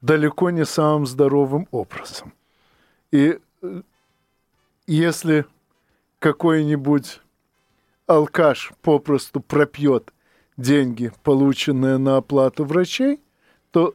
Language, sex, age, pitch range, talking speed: Russian, male, 50-69, 140-175 Hz, 75 wpm